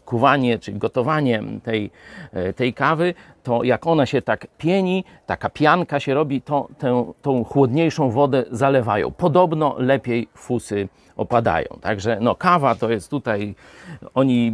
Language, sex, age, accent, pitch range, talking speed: Polish, male, 40-59, native, 115-155 Hz, 130 wpm